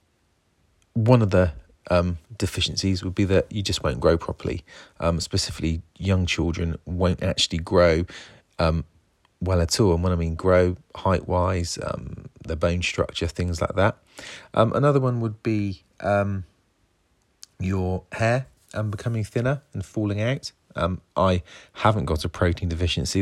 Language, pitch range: English, 85-100 Hz